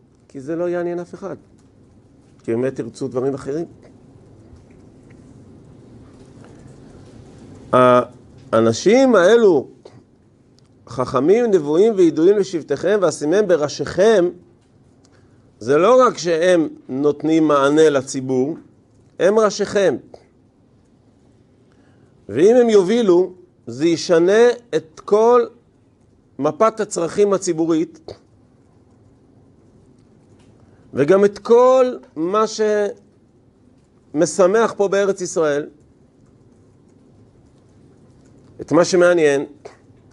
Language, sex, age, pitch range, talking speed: Hebrew, male, 50-69, 125-175 Hz, 75 wpm